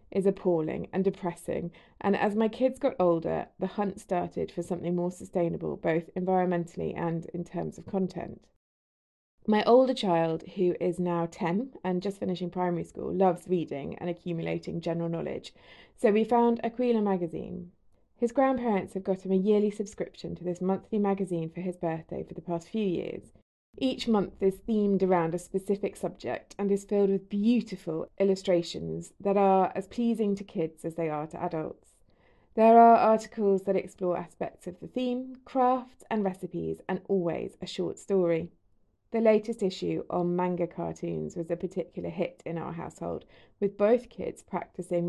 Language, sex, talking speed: English, female, 170 wpm